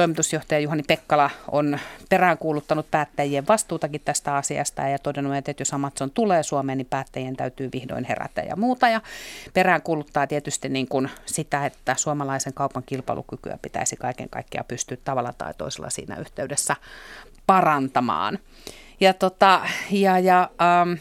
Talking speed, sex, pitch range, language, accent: 135 wpm, female, 140-185 Hz, Finnish, native